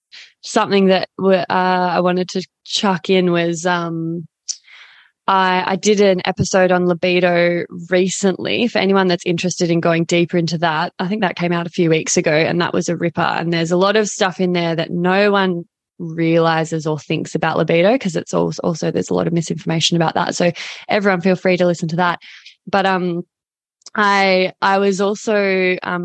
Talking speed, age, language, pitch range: 190 wpm, 20-39, English, 170-195 Hz